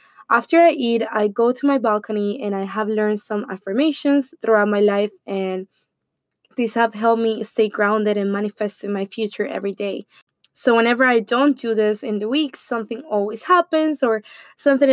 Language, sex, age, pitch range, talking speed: English, female, 20-39, 205-250 Hz, 180 wpm